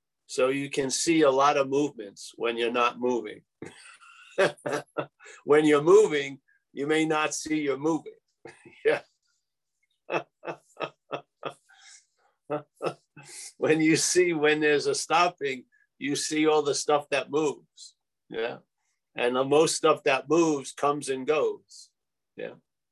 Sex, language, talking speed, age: male, English, 125 wpm, 50-69